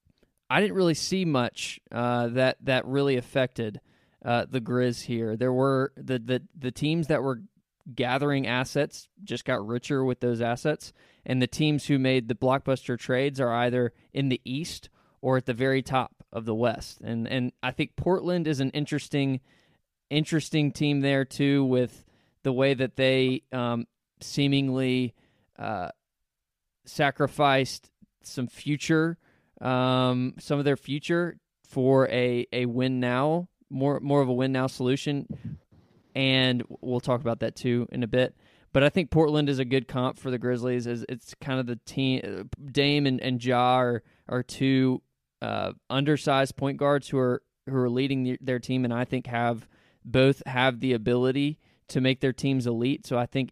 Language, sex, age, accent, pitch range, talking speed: English, male, 20-39, American, 125-140 Hz, 170 wpm